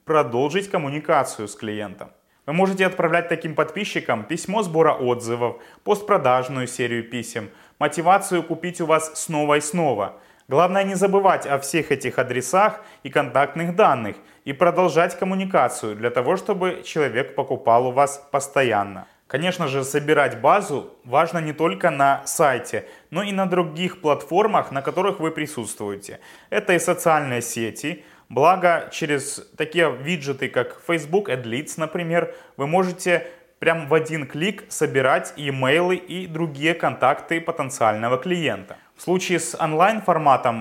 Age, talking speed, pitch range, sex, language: 20-39, 135 wpm, 135-180 Hz, male, Russian